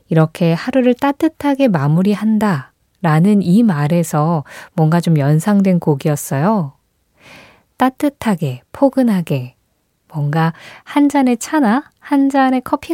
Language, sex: Korean, female